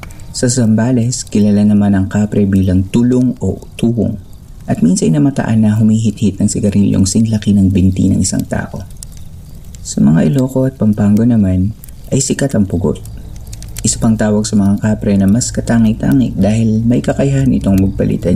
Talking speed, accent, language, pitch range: 155 wpm, native, Filipino, 95-115 Hz